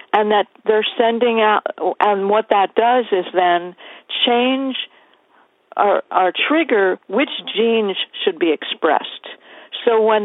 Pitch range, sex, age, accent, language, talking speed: 180-225 Hz, female, 50-69, American, English, 130 wpm